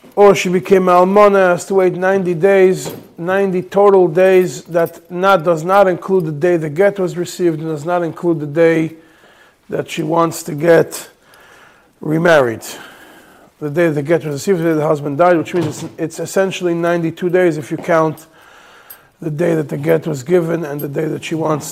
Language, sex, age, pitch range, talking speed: English, male, 40-59, 160-190 Hz, 190 wpm